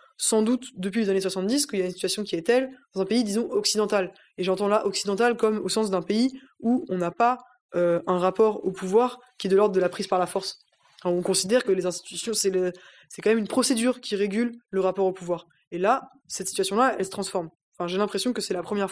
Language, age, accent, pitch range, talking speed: French, 20-39, French, 185-215 Hz, 255 wpm